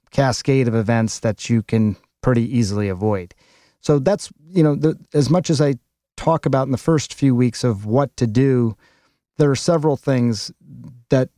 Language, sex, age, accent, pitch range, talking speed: English, male, 40-59, American, 115-135 Hz, 175 wpm